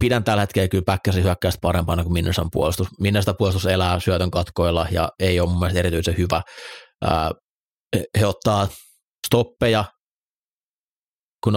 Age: 30-49